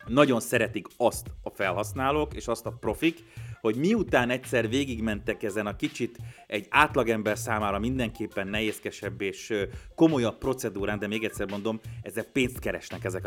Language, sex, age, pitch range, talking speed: Hungarian, male, 30-49, 100-125 Hz, 145 wpm